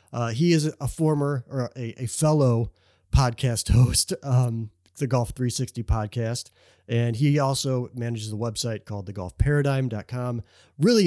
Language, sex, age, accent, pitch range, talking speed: English, male, 30-49, American, 105-140 Hz, 135 wpm